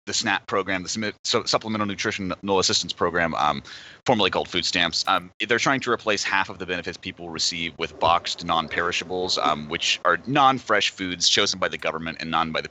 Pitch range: 85-100 Hz